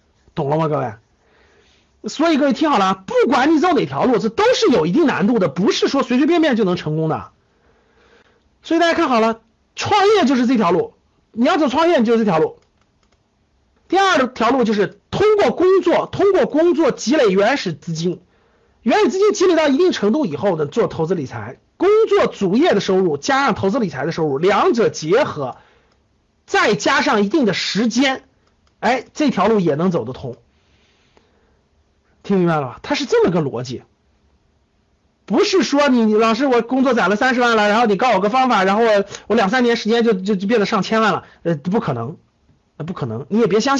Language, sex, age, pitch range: Chinese, male, 50-69, 190-285 Hz